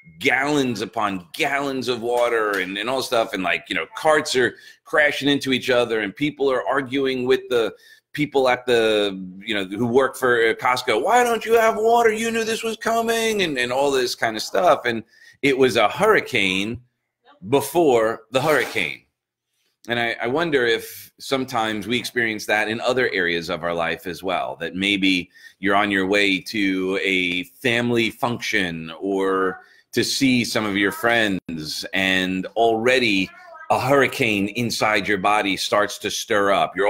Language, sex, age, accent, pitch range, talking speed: English, male, 30-49, American, 100-140 Hz, 170 wpm